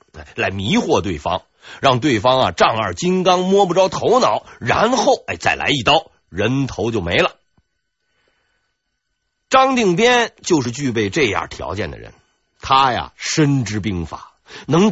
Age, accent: 50-69, native